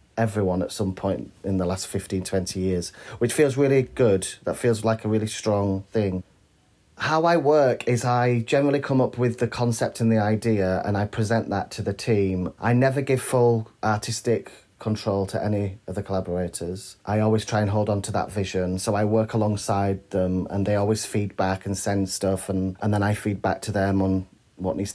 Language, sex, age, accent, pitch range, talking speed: English, male, 30-49, British, 95-115 Hz, 205 wpm